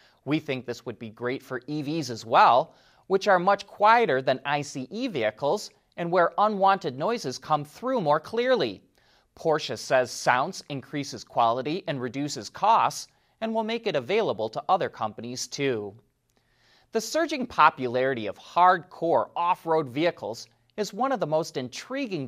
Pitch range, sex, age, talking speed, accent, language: 125-195 Hz, male, 30-49, 150 wpm, American, English